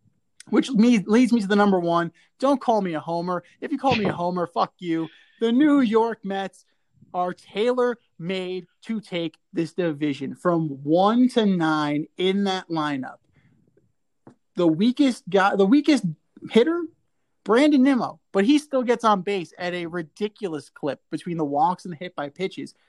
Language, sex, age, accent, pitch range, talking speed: English, male, 20-39, American, 165-210 Hz, 160 wpm